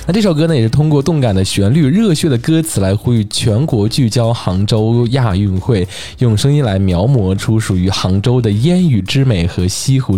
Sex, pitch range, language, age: male, 95-135 Hz, Chinese, 20-39